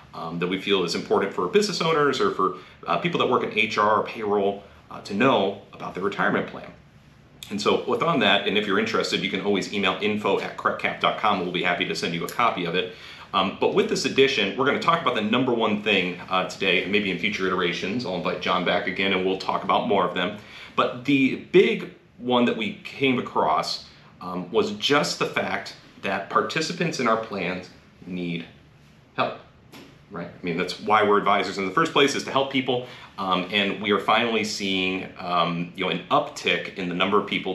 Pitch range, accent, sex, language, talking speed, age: 95-130 Hz, American, male, English, 215 wpm, 40-59